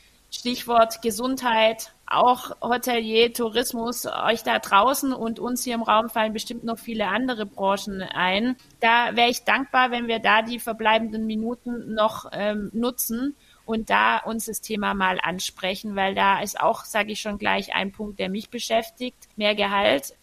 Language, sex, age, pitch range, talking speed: German, female, 30-49, 205-235 Hz, 165 wpm